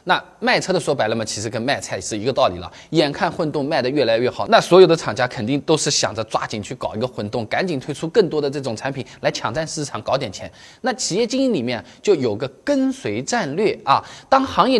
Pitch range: 120-185 Hz